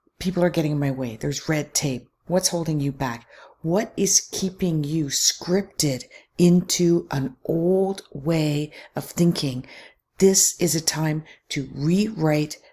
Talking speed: 140 wpm